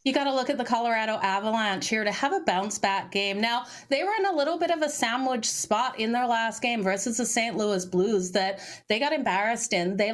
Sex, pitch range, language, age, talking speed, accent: female, 215-265 Hz, English, 30-49, 245 wpm, American